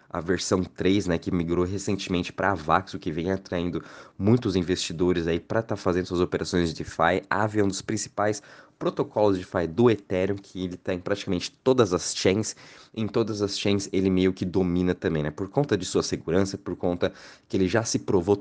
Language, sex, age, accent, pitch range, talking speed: Portuguese, male, 20-39, Brazilian, 95-120 Hz, 210 wpm